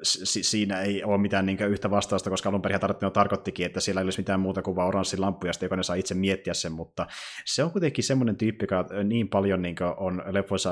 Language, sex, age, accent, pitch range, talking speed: Finnish, male, 30-49, native, 90-110 Hz, 205 wpm